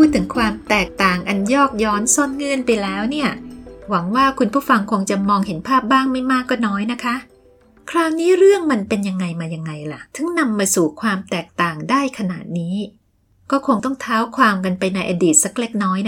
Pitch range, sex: 190-265 Hz, female